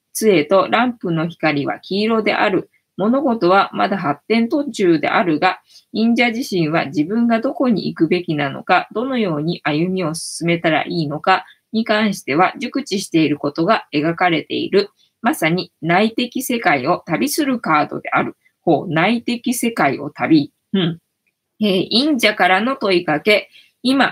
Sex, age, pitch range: female, 20-39, 170-260 Hz